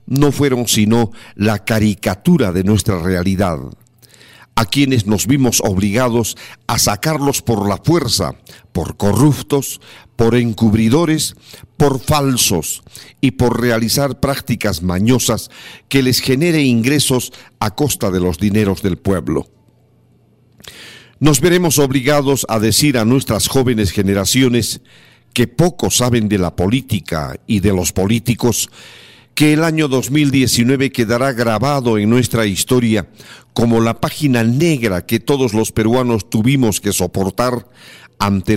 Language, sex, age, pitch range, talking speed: Spanish, male, 50-69, 105-130 Hz, 125 wpm